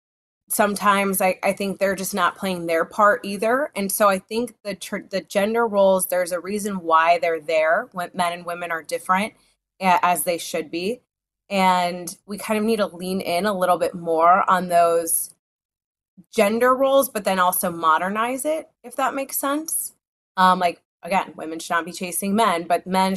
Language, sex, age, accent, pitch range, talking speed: English, female, 20-39, American, 175-210 Hz, 185 wpm